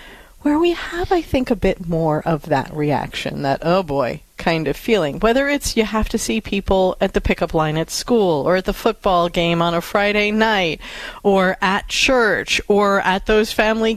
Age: 40-59